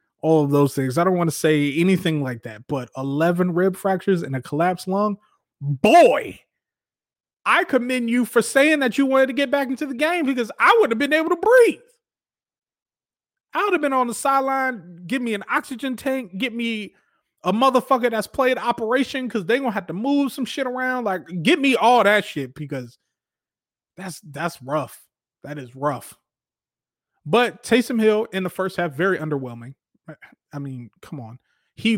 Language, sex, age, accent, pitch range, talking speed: English, male, 30-49, American, 150-245 Hz, 185 wpm